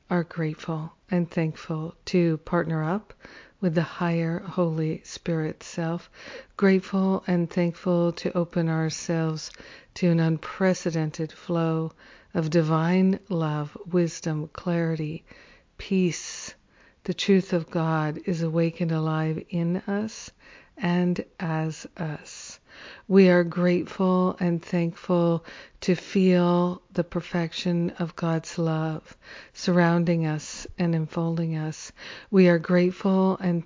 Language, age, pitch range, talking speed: English, 50-69, 165-180 Hz, 110 wpm